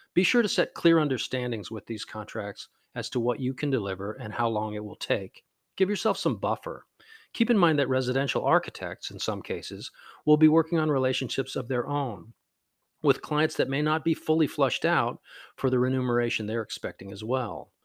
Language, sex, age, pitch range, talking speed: English, male, 40-59, 105-145 Hz, 200 wpm